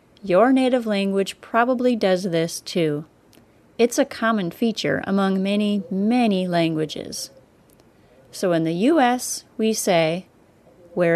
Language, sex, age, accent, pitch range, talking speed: English, female, 30-49, American, 165-225 Hz, 120 wpm